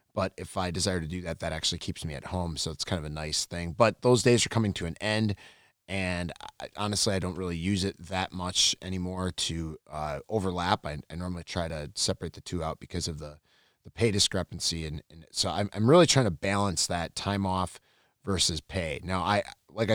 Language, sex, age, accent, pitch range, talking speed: English, male, 30-49, American, 85-105 Hz, 225 wpm